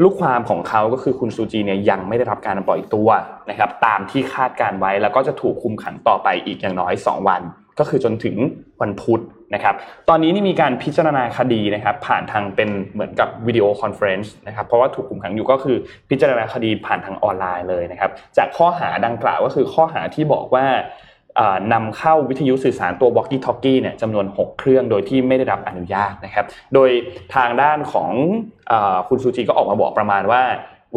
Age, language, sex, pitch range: 20-39, Thai, male, 100-135 Hz